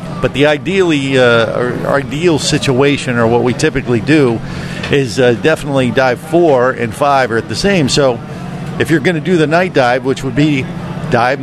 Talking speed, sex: 190 wpm, male